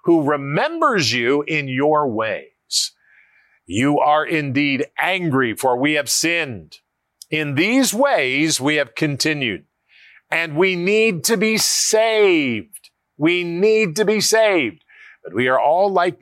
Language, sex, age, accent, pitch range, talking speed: English, male, 50-69, American, 145-215 Hz, 135 wpm